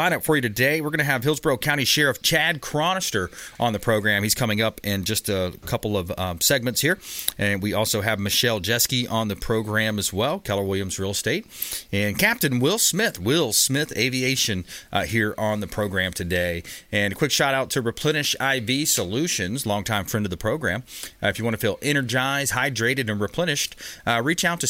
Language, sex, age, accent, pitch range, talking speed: English, male, 30-49, American, 100-130 Hz, 200 wpm